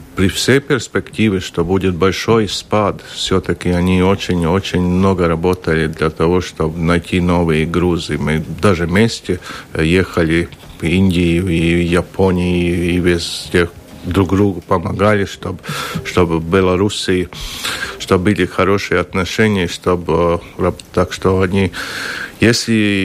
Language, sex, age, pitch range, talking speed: Russian, male, 50-69, 85-100 Hz, 115 wpm